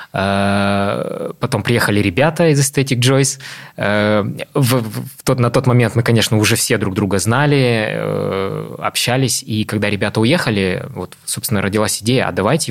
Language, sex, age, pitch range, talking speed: Russian, male, 20-39, 95-120 Hz, 125 wpm